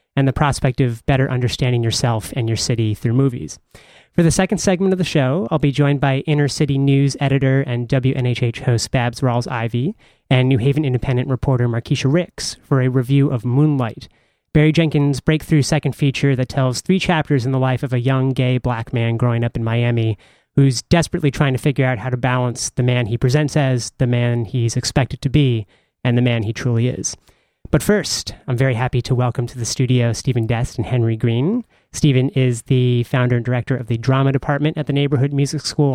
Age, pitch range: 30-49, 125-145 Hz